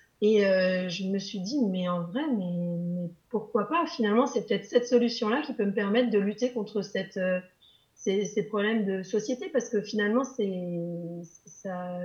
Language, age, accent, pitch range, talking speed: French, 30-49, French, 195-230 Hz, 185 wpm